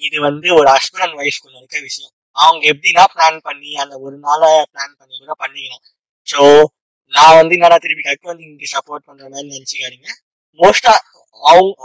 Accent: native